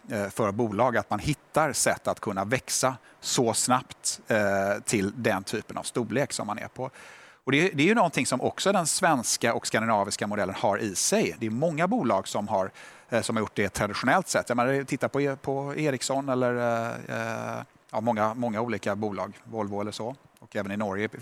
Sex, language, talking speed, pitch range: male, Swedish, 200 wpm, 110-140 Hz